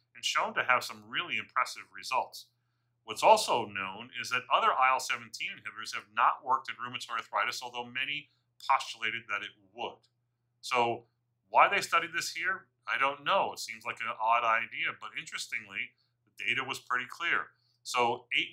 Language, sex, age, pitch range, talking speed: English, male, 40-59, 115-125 Hz, 170 wpm